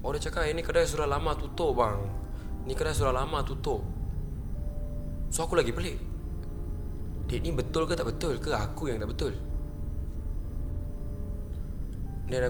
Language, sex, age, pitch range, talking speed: Malay, male, 20-39, 80-110 Hz, 145 wpm